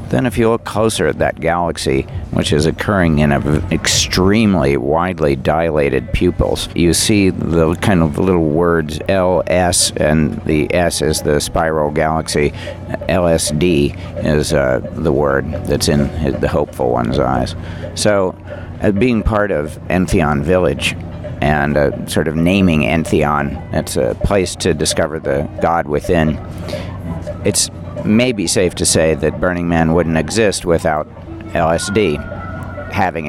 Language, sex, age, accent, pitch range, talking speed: English, male, 60-79, American, 80-100 Hz, 145 wpm